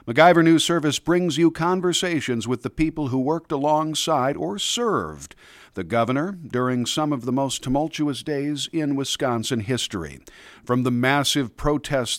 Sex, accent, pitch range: male, American, 90-140 Hz